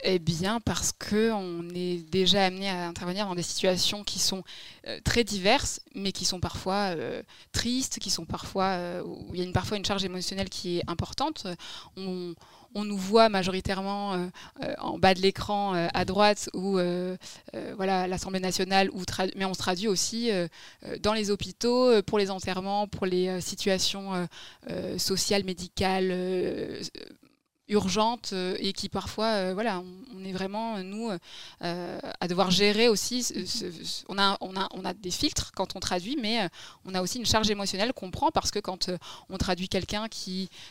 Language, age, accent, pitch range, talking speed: French, 20-39, French, 185-210 Hz, 190 wpm